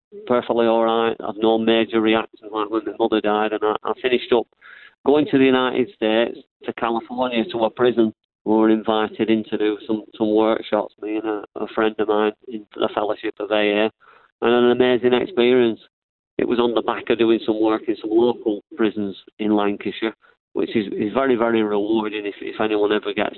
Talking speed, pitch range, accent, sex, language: 200 wpm, 105-120 Hz, British, male, English